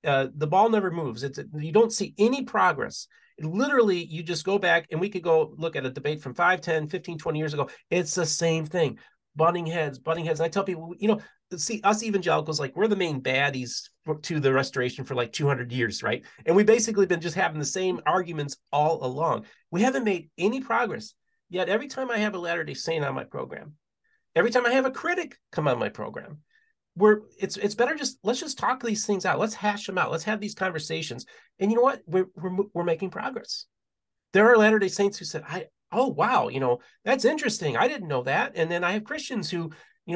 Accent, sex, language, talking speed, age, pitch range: American, male, English, 225 wpm, 40-59, 155-215 Hz